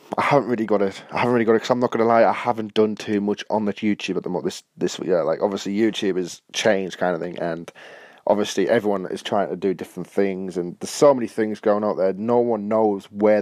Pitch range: 100-120 Hz